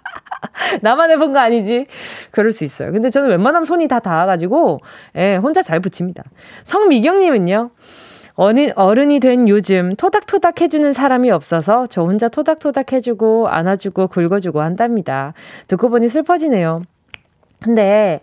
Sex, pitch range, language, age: female, 185-275 Hz, Korean, 20-39